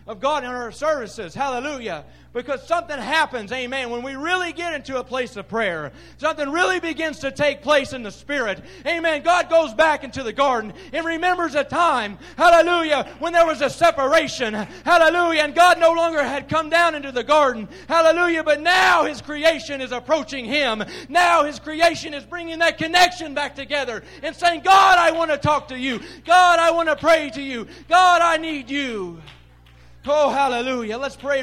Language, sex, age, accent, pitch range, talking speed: English, male, 30-49, American, 195-315 Hz, 185 wpm